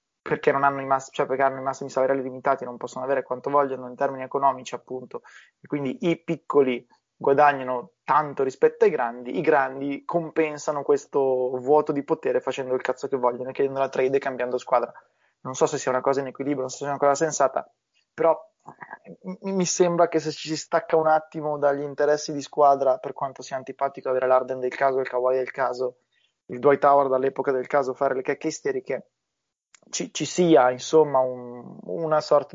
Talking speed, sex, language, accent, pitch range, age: 195 wpm, male, Italian, native, 130-155 Hz, 20-39